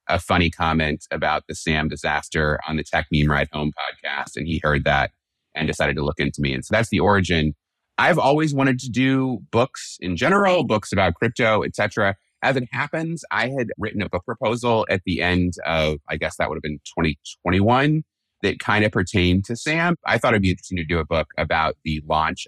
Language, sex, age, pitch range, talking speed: English, male, 30-49, 80-110 Hz, 210 wpm